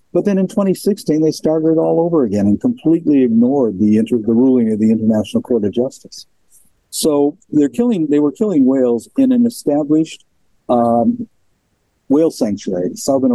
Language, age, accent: English, 50-69, American